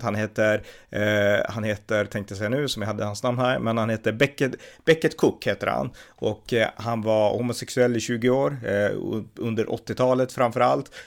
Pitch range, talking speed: 105-125 Hz, 190 wpm